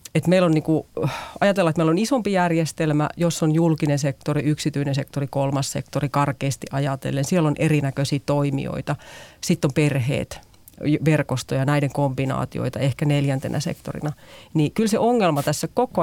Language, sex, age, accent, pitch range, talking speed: Finnish, female, 40-59, native, 140-165 Hz, 135 wpm